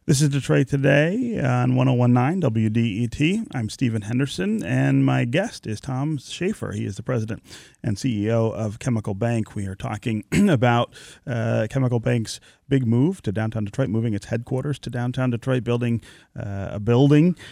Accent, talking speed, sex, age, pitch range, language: American, 160 wpm, male, 30-49, 110-130 Hz, English